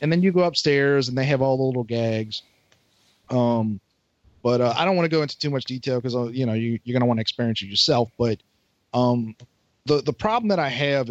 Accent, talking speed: American, 245 wpm